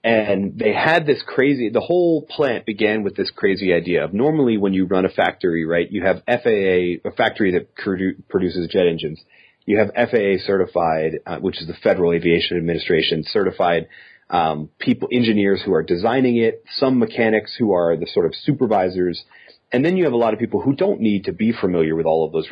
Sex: male